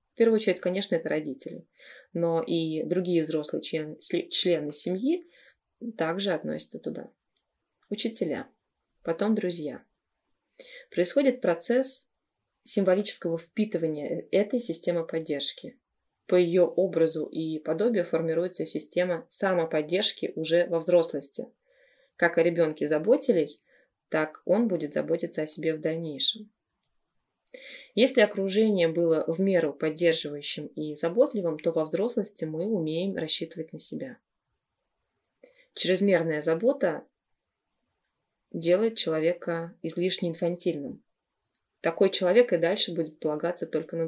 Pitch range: 160-215 Hz